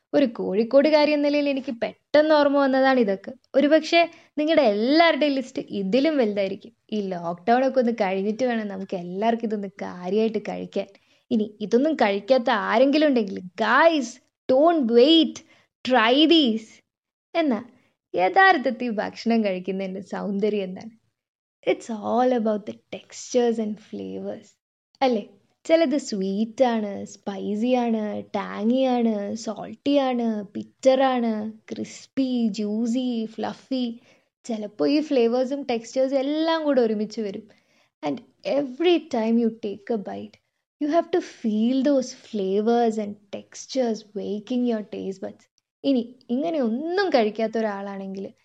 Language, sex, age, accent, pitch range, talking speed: Malayalam, female, 20-39, native, 210-270 Hz, 110 wpm